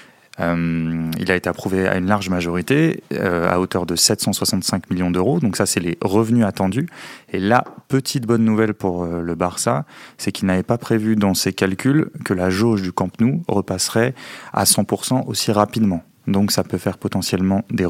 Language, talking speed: French, 190 wpm